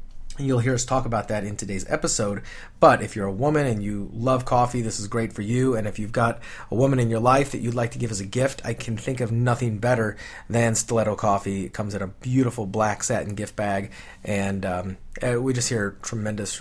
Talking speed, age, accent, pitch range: 230 wpm, 30-49, American, 105-130 Hz